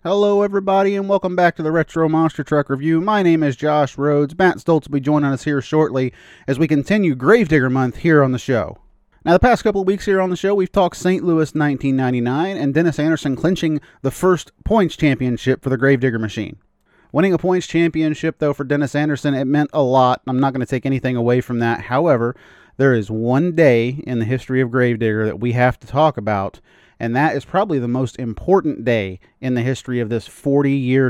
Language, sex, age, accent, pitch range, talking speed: English, male, 30-49, American, 120-160 Hz, 215 wpm